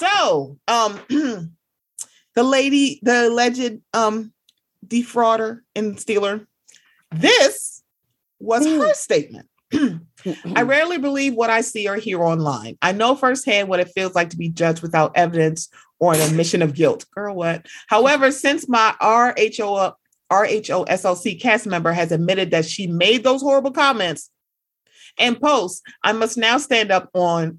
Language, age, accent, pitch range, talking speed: English, 30-49, American, 165-225 Hz, 140 wpm